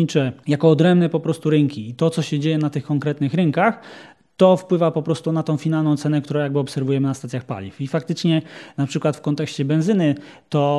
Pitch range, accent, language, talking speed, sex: 135-155 Hz, native, Polish, 200 wpm, male